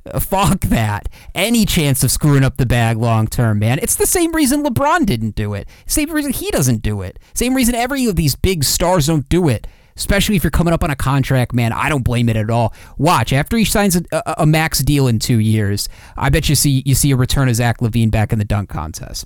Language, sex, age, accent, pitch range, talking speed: English, male, 30-49, American, 115-150 Hz, 245 wpm